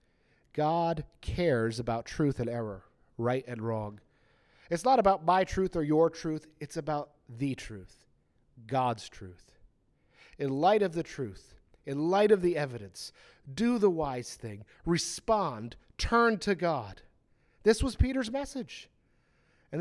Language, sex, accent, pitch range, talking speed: English, male, American, 120-180 Hz, 140 wpm